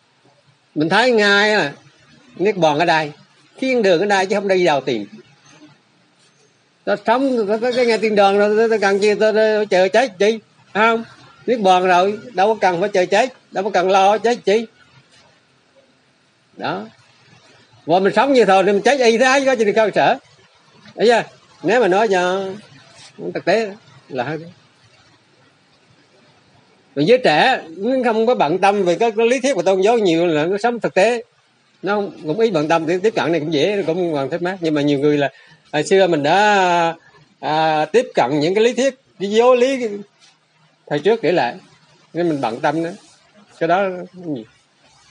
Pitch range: 155-225 Hz